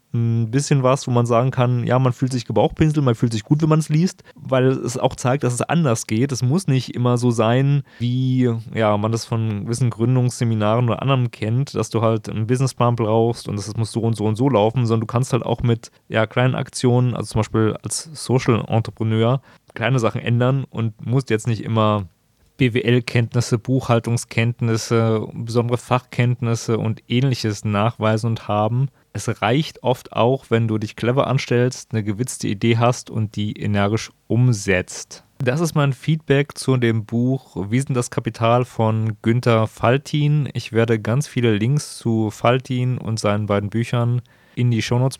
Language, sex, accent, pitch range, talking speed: German, male, German, 110-130 Hz, 180 wpm